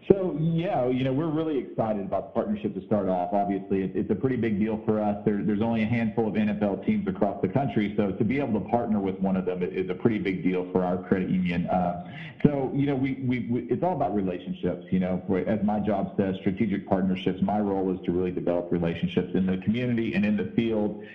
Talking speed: 235 wpm